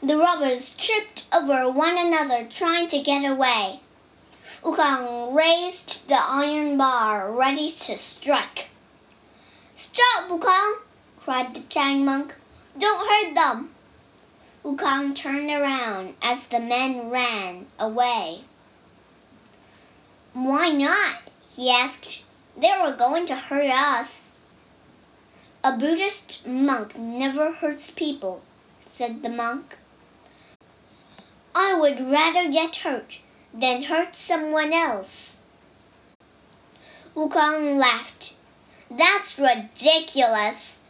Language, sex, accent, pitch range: Chinese, male, American, 255-335 Hz